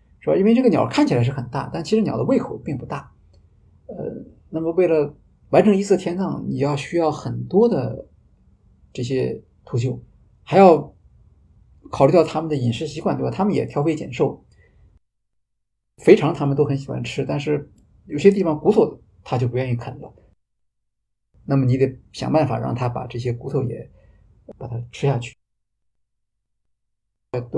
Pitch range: 110-150 Hz